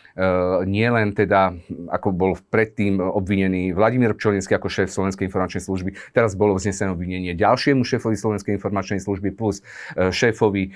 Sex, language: male, Slovak